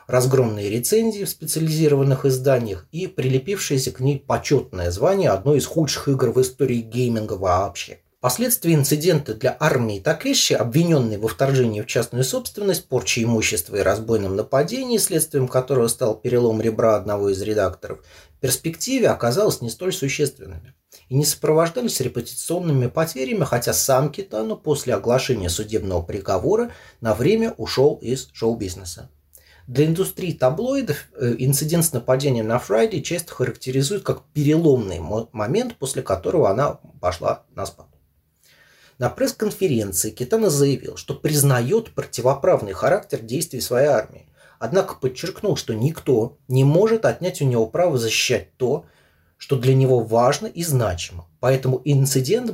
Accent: native